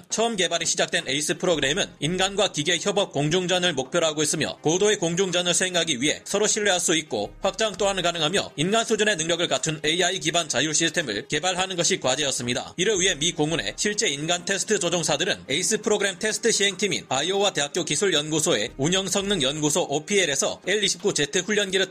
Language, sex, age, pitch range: Korean, male, 30-49, 155-200 Hz